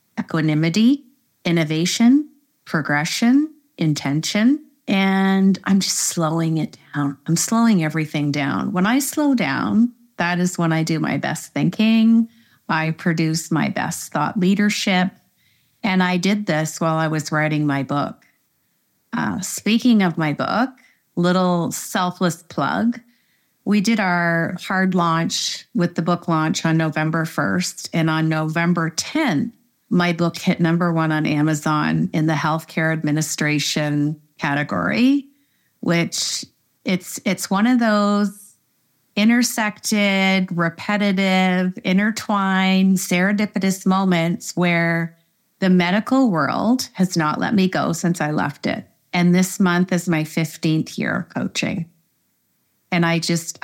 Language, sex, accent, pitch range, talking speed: English, female, American, 160-205 Hz, 130 wpm